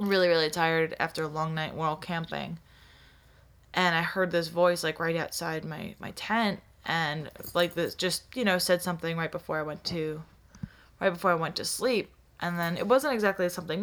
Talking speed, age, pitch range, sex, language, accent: 195 wpm, 20-39, 160-190 Hz, female, English, American